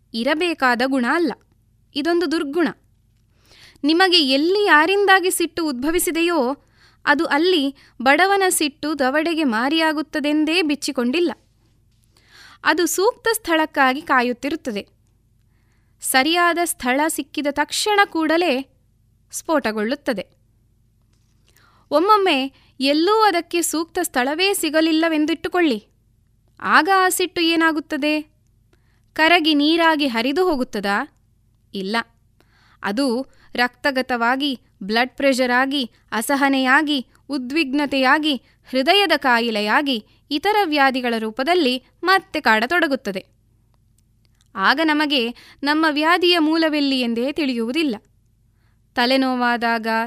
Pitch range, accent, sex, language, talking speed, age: 230-320 Hz, native, female, Kannada, 75 wpm, 20-39